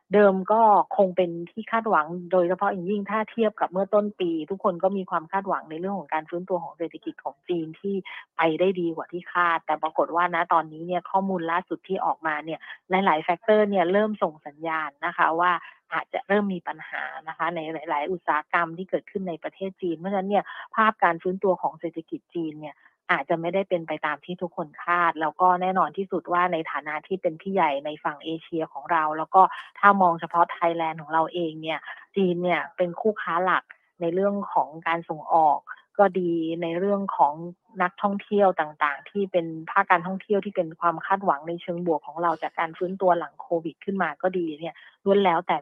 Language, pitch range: Thai, 165-190 Hz